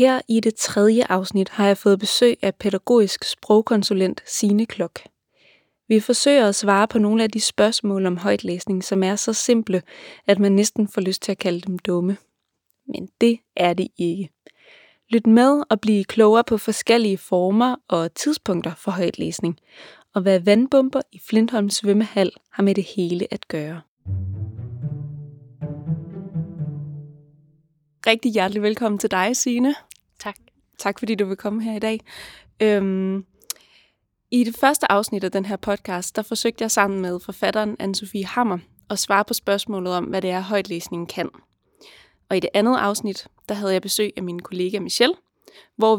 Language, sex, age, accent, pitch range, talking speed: Danish, female, 20-39, native, 185-225 Hz, 160 wpm